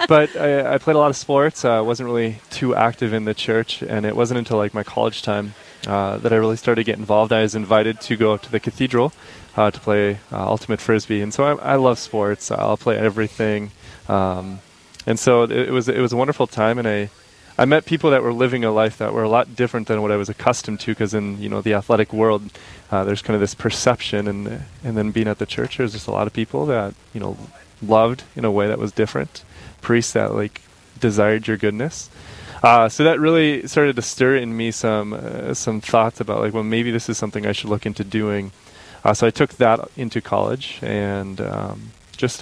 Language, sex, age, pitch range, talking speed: English, male, 20-39, 105-120 Hz, 230 wpm